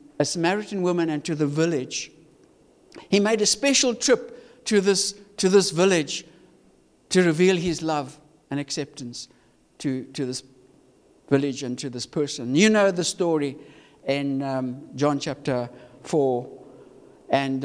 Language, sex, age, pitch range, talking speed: English, male, 60-79, 150-210 Hz, 140 wpm